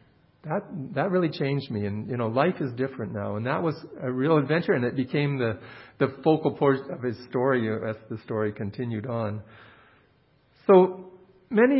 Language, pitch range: English, 110-140 Hz